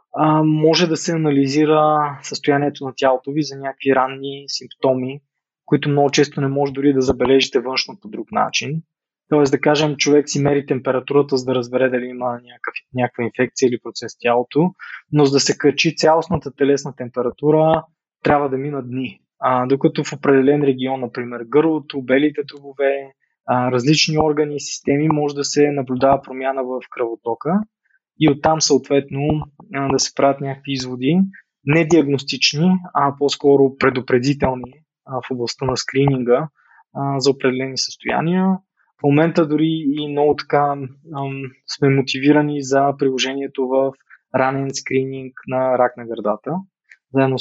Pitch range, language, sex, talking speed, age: 130-150 Hz, Bulgarian, male, 140 wpm, 20-39